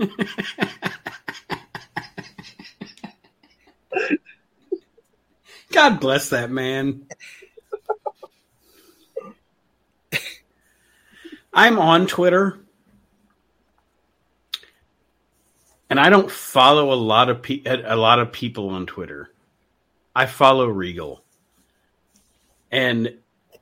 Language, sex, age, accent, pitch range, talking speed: English, male, 50-69, American, 115-145 Hz, 65 wpm